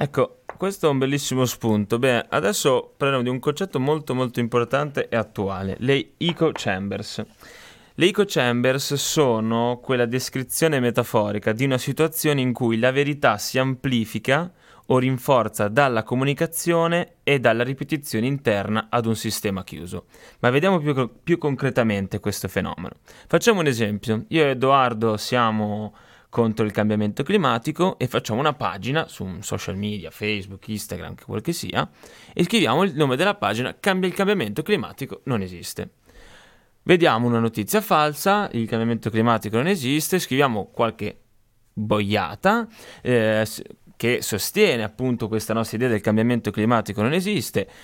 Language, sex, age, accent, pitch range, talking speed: Italian, male, 20-39, native, 110-150 Hz, 140 wpm